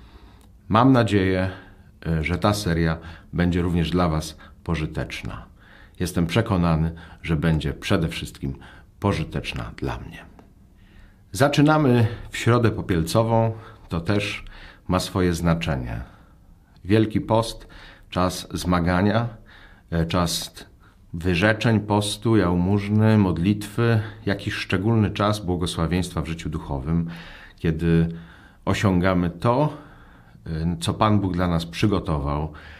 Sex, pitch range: male, 85-100 Hz